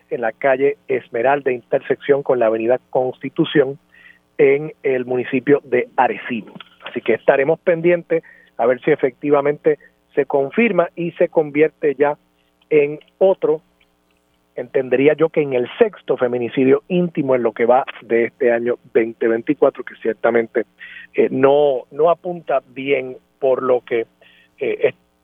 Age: 40-59